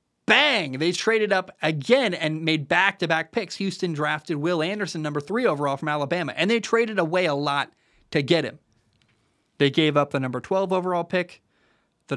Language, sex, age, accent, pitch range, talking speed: English, male, 20-39, American, 130-180 Hz, 180 wpm